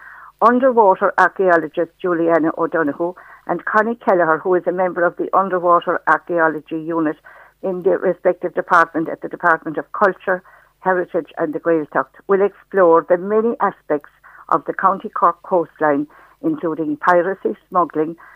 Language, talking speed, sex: English, 135 wpm, female